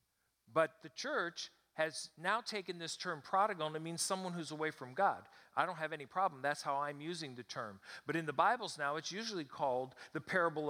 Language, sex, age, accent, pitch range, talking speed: English, male, 50-69, American, 130-190 Hz, 215 wpm